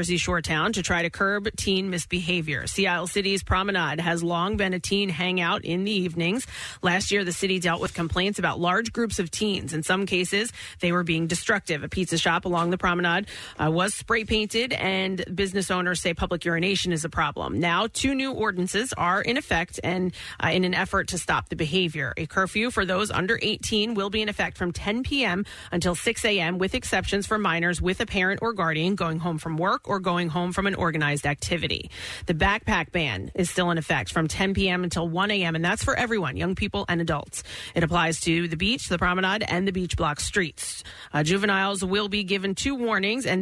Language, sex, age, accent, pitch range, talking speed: English, female, 30-49, American, 170-200 Hz, 210 wpm